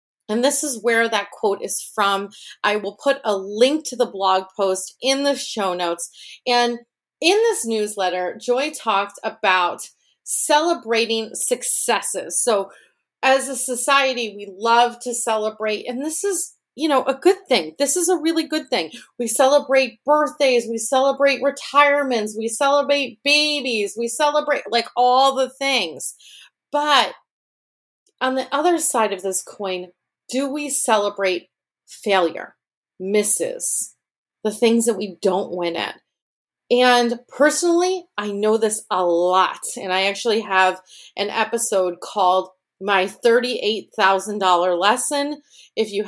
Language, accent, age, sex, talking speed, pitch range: English, American, 30-49, female, 140 wpm, 200-270 Hz